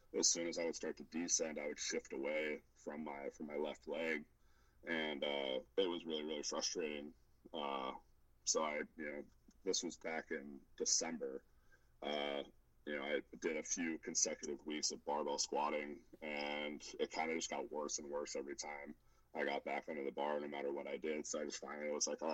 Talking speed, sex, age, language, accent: 205 wpm, male, 30-49, English, American